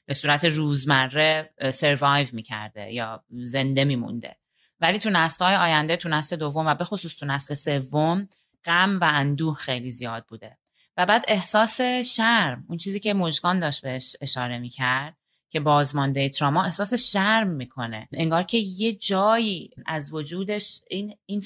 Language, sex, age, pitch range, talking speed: Persian, female, 30-49, 135-200 Hz, 145 wpm